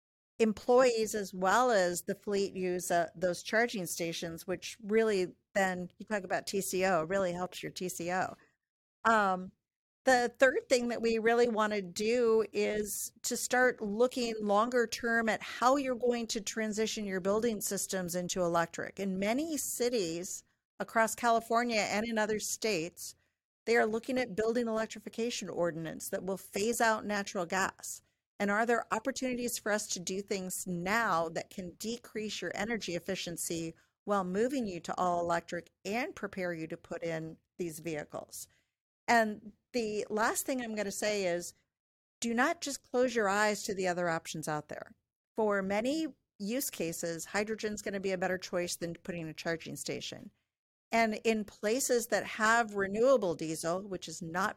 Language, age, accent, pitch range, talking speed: English, 50-69, American, 180-230 Hz, 165 wpm